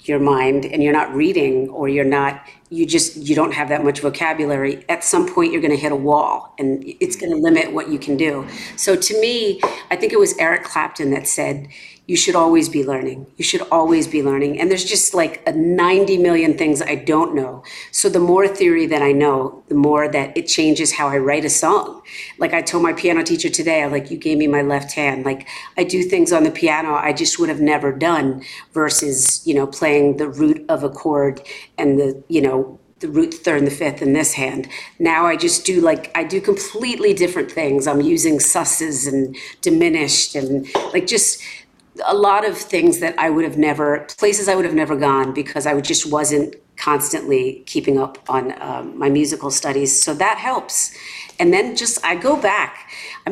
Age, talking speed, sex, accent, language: 50-69, 215 wpm, female, American, English